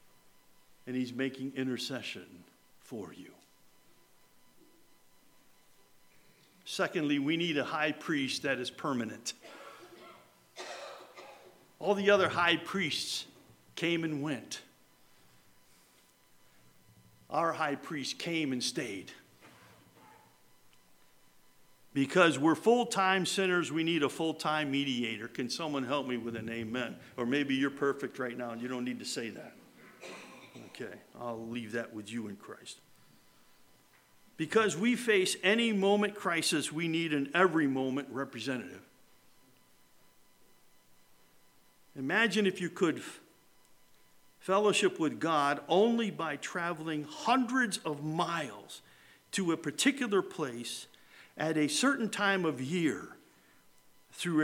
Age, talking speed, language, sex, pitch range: 50-69, 110 wpm, English, male, 135-190 Hz